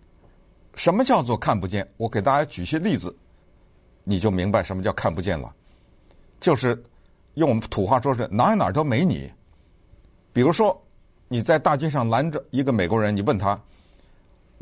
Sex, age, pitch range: male, 50-69, 90-140 Hz